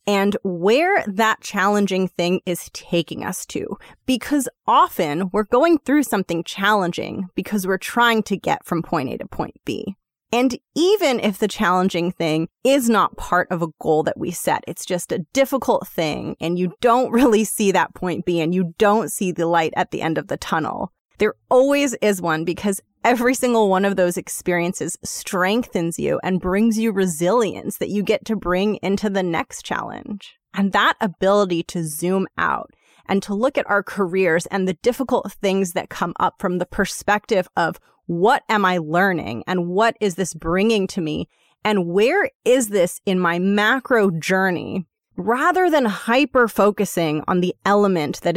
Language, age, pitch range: English, 20-39, 180-220 Hz